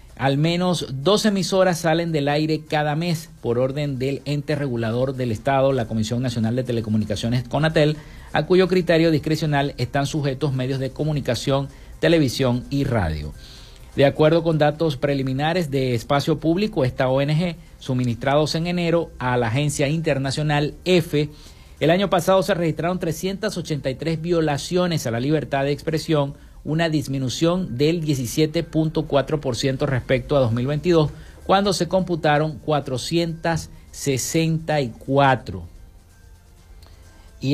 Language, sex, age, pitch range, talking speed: Spanish, male, 50-69, 130-165 Hz, 120 wpm